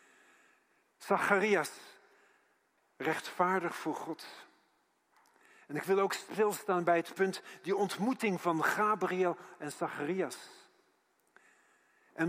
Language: Dutch